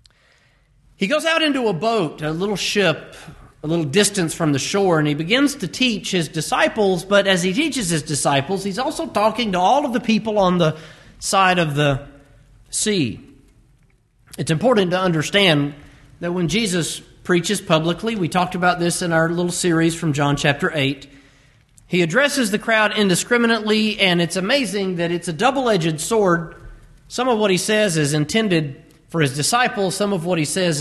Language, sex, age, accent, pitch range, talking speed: English, male, 40-59, American, 150-205 Hz, 175 wpm